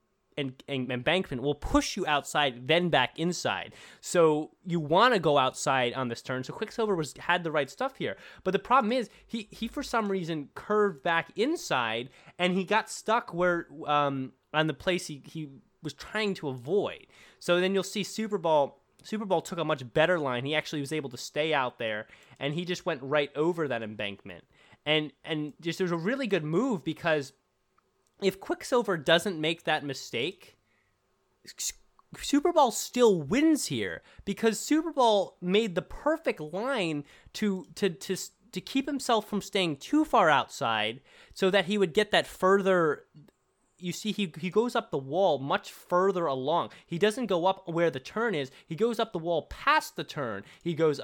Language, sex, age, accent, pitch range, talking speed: English, male, 20-39, American, 155-210 Hz, 185 wpm